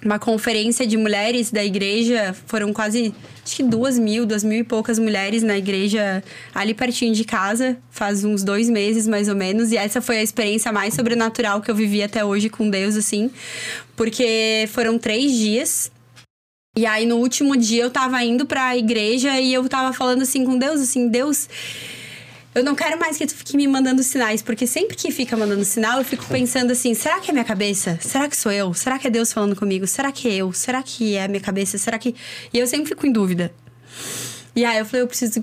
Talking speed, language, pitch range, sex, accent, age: 215 wpm, Portuguese, 210-250 Hz, female, Brazilian, 10-29